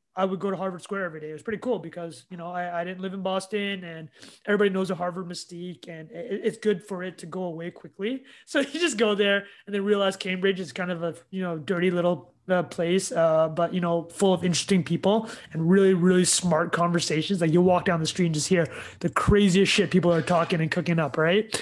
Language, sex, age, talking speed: English, male, 20-39, 240 wpm